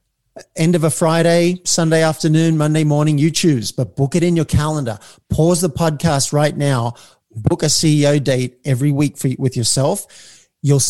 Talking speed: 165 wpm